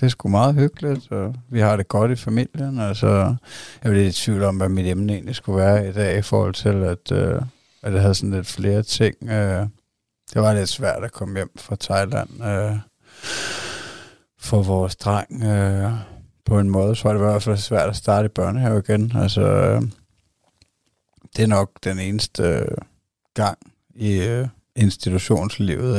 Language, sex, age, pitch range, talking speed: Danish, male, 60-79, 95-110 Hz, 175 wpm